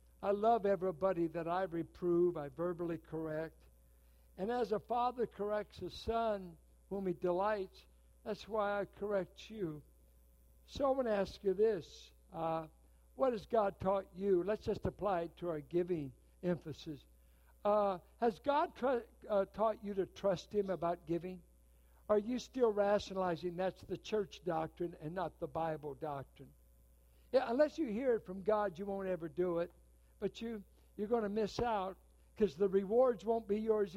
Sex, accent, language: male, American, English